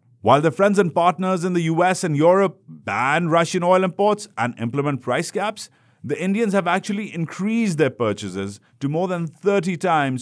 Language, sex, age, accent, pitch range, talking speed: English, male, 50-69, Indian, 110-175 Hz, 175 wpm